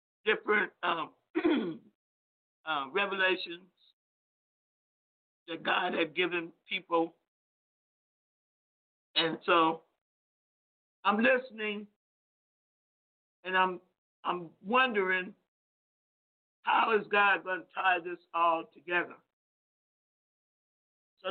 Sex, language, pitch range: male, English, 175-220 Hz